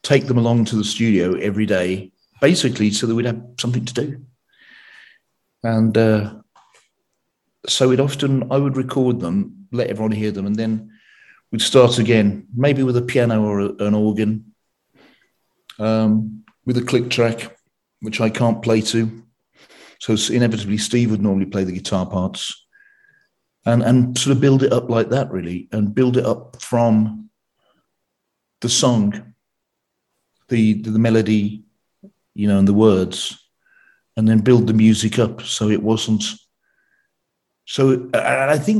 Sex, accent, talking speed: male, British, 155 wpm